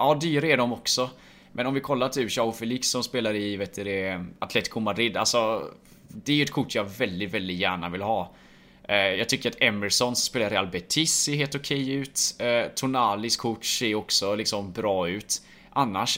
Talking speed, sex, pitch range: 195 wpm, male, 100-130 Hz